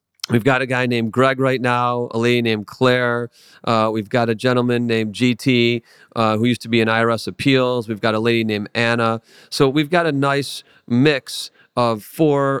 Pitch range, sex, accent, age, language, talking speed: 115-140 Hz, male, American, 40-59, English, 195 wpm